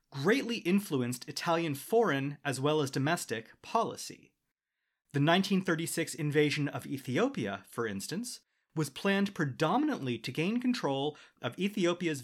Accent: American